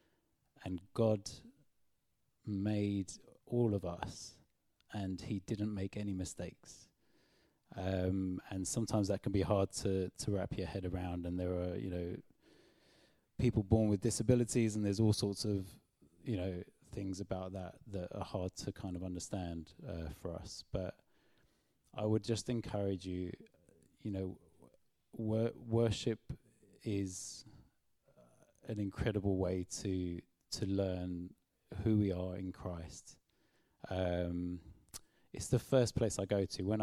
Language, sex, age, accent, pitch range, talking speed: English, male, 30-49, British, 90-105 Hz, 140 wpm